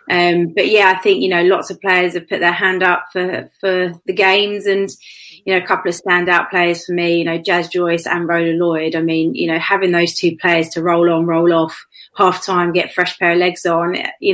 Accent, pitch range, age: British, 165-190 Hz, 30-49